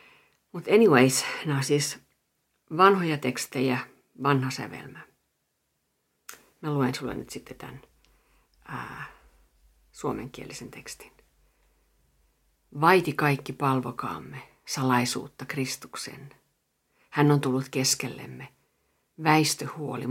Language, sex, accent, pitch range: Finnish, female, native, 125-150 Hz